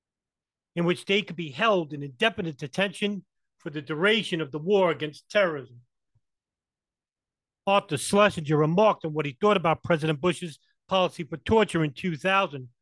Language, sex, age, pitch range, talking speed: English, male, 40-59, 145-195 Hz, 150 wpm